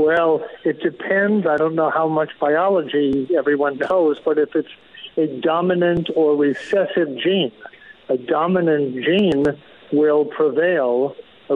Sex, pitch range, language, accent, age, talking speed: male, 145-175 Hz, English, American, 50-69, 130 wpm